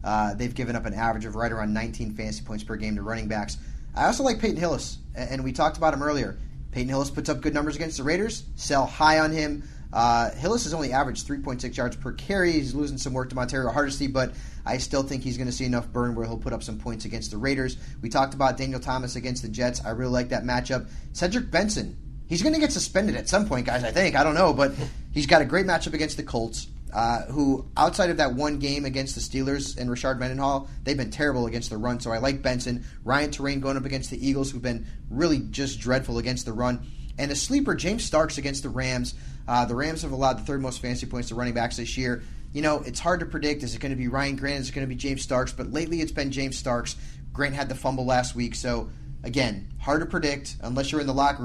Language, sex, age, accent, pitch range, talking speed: English, male, 30-49, American, 120-140 Hz, 255 wpm